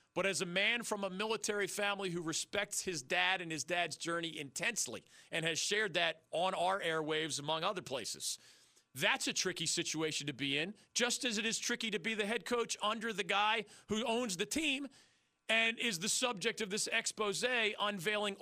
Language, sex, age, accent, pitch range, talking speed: English, male, 40-59, American, 165-225 Hz, 190 wpm